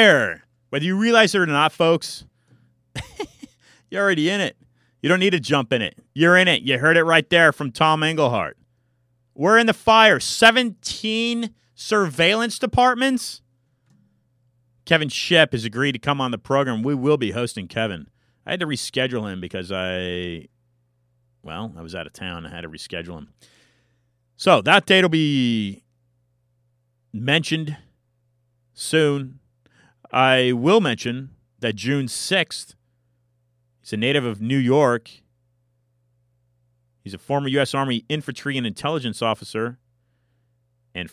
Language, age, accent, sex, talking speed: English, 30-49, American, male, 140 wpm